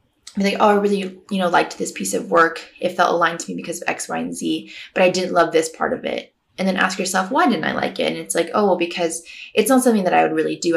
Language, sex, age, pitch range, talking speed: English, female, 20-39, 165-205 Hz, 295 wpm